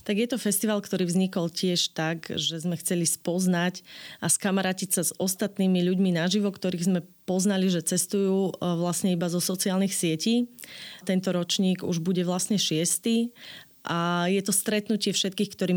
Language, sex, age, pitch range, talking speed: Slovak, female, 20-39, 170-195 Hz, 155 wpm